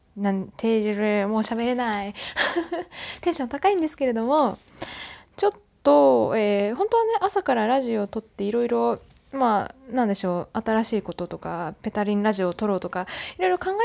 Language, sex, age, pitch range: Japanese, female, 20-39, 200-275 Hz